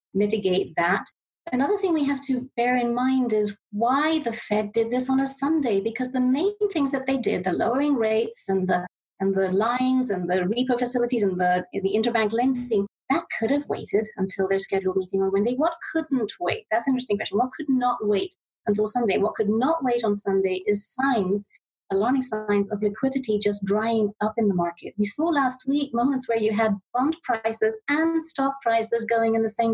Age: 30-49